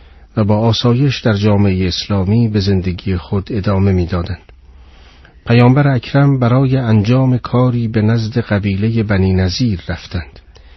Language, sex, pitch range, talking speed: Persian, male, 90-115 Hz, 125 wpm